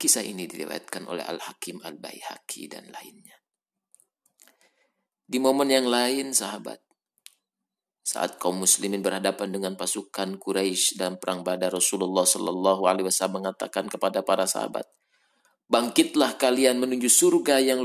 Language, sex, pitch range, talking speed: Indonesian, male, 95-130 Hz, 130 wpm